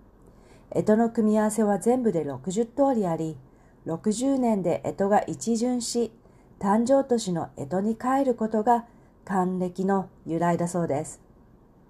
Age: 40-59